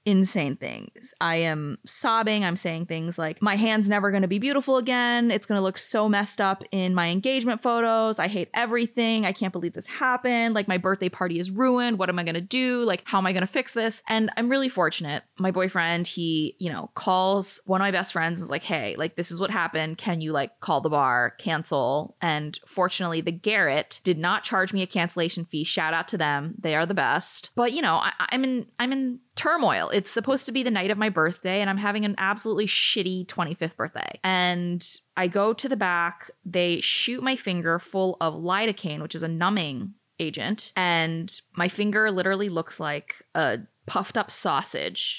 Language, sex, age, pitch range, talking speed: English, female, 20-39, 170-220 Hz, 210 wpm